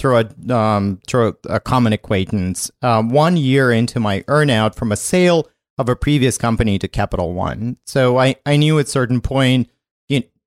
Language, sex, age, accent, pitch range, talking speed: English, male, 40-59, American, 105-135 Hz, 170 wpm